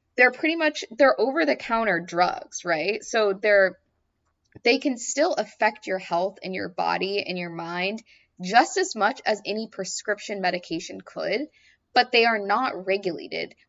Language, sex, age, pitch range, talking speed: English, female, 20-39, 165-220 Hz, 150 wpm